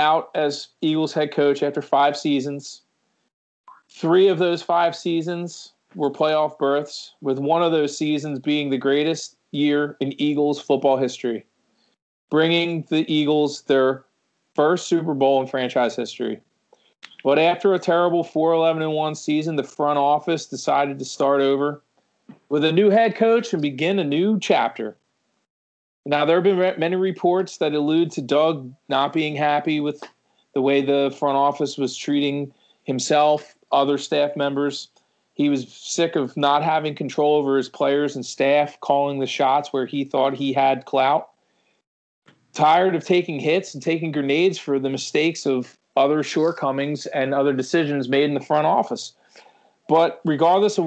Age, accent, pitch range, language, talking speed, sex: 40-59, American, 140-160 Hz, English, 160 wpm, male